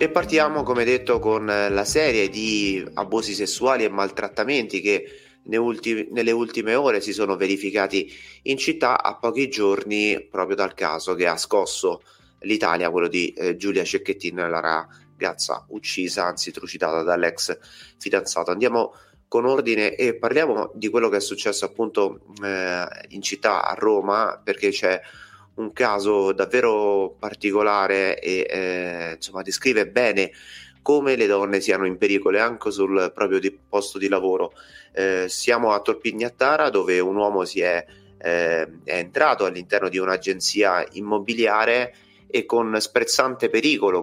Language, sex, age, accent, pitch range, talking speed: Italian, male, 30-49, native, 95-120 Hz, 140 wpm